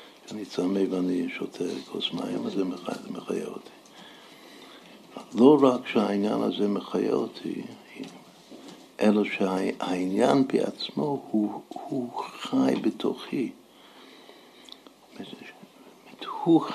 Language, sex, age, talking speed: Hebrew, male, 60-79, 85 wpm